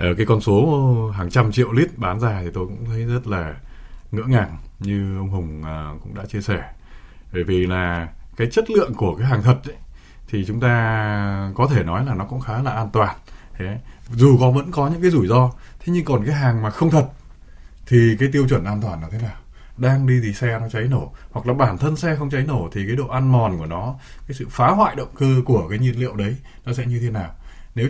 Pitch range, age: 100-130 Hz, 20-39